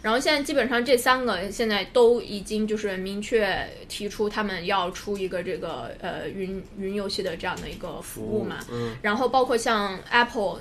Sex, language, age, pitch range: female, Chinese, 20-39, 190-225 Hz